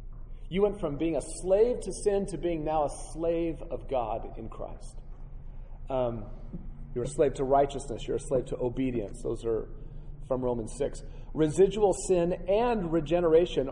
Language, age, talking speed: English, 40-59, 160 wpm